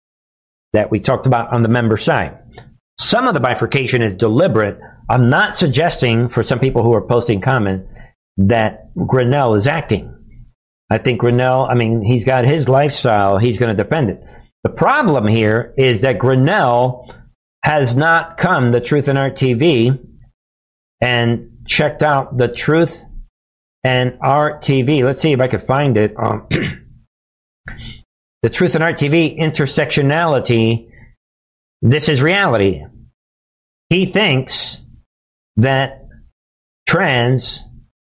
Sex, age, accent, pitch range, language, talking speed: male, 60-79, American, 110-140 Hz, English, 135 wpm